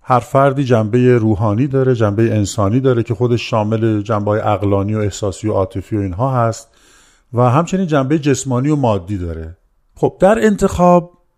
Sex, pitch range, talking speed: male, 100-130 Hz, 160 wpm